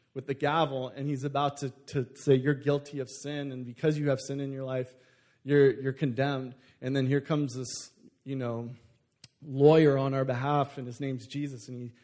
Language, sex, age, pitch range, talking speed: English, male, 20-39, 125-145 Hz, 205 wpm